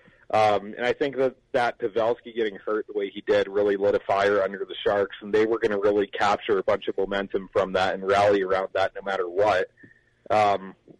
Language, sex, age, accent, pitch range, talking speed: English, male, 30-49, American, 105-155 Hz, 225 wpm